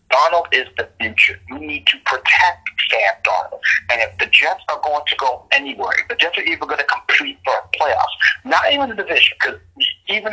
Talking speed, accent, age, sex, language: 210 wpm, American, 40-59, male, English